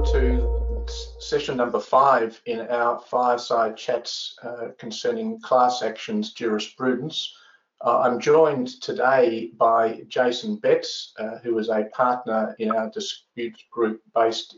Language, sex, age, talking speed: English, male, 50-69, 125 wpm